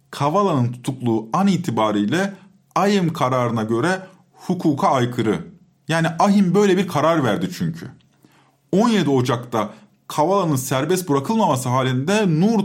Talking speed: 110 wpm